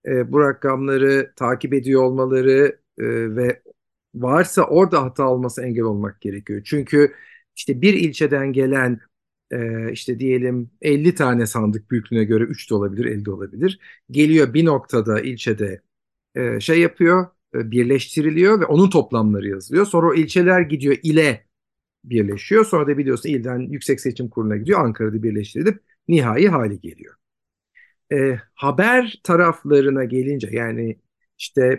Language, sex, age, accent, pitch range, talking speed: Turkish, male, 50-69, native, 125-175 Hz, 125 wpm